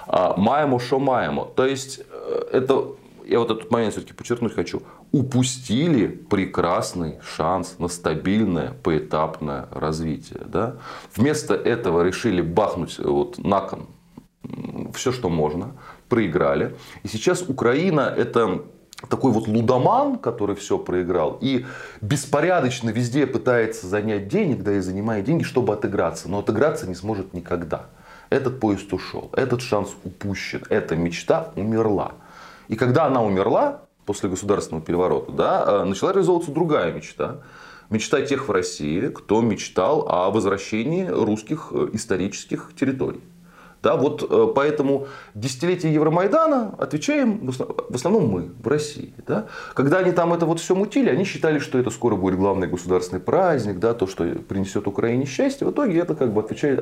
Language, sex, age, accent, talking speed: Russian, male, 30-49, native, 135 wpm